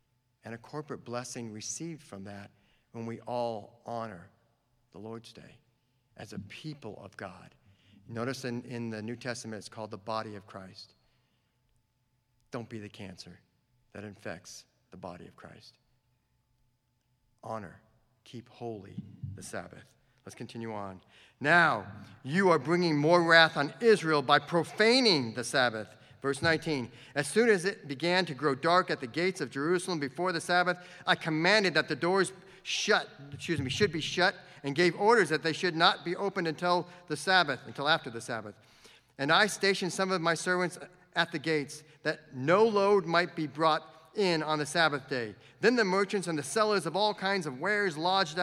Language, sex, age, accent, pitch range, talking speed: English, male, 50-69, American, 120-175 Hz, 170 wpm